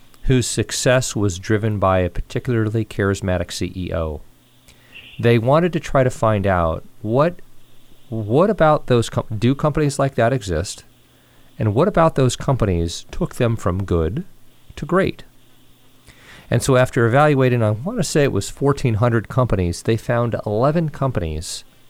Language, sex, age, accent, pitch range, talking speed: English, male, 40-59, American, 100-130 Hz, 145 wpm